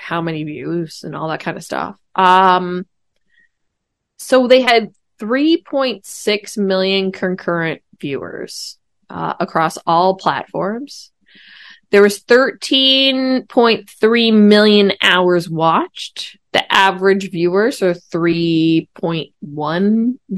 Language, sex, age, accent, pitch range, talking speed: English, female, 20-39, American, 175-220 Hz, 95 wpm